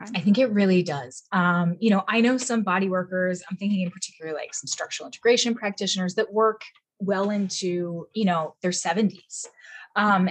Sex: female